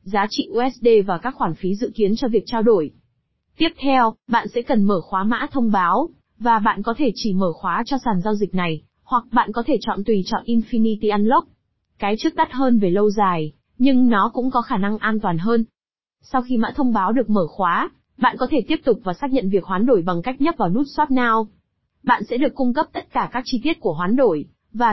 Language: Vietnamese